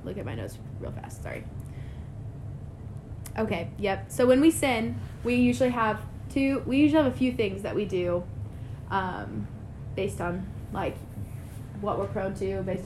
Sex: female